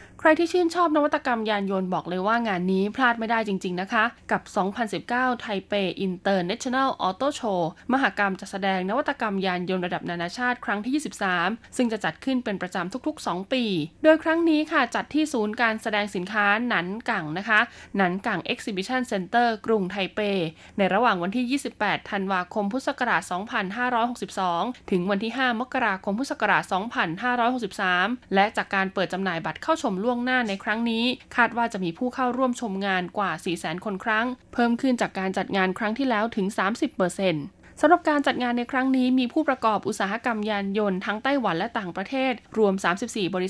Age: 20-39